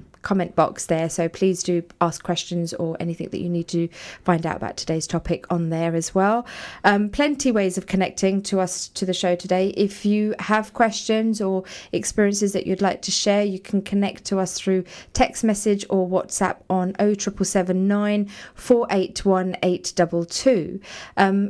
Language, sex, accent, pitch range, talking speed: English, female, British, 170-205 Hz, 160 wpm